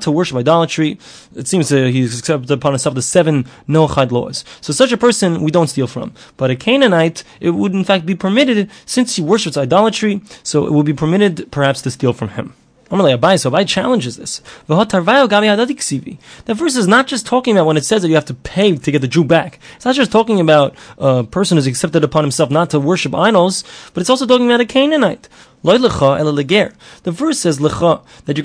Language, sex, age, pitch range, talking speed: English, male, 20-39, 145-200 Hz, 205 wpm